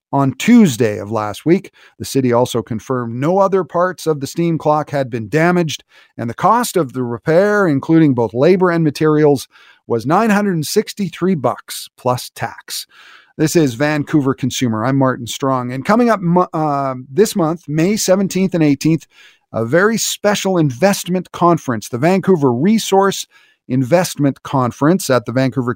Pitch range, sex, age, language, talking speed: 130-180 Hz, male, 40-59, English, 150 wpm